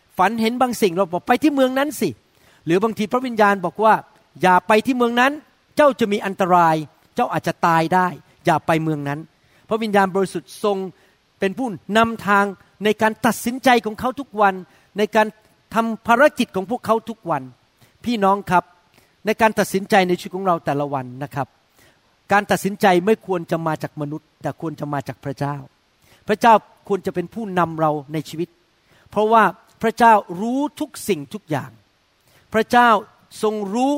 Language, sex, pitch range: Thai, male, 160-225 Hz